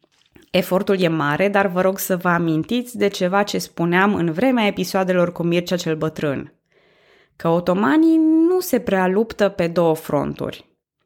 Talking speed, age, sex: 155 wpm, 20-39, female